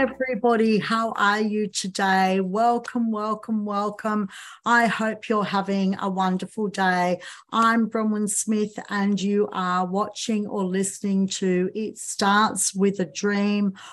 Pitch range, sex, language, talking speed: 180-215 Hz, female, English, 130 wpm